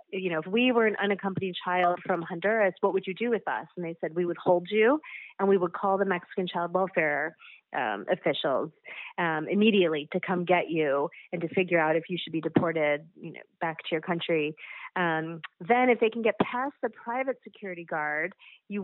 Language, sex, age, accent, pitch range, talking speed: English, female, 30-49, American, 165-205 Hz, 210 wpm